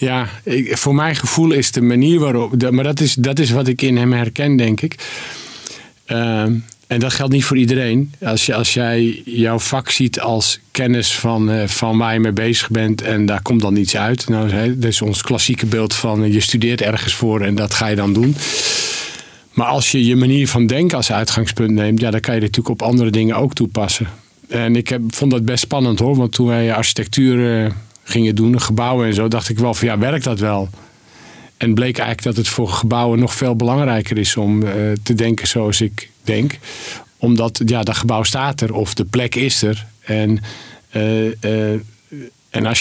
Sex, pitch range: male, 110-125 Hz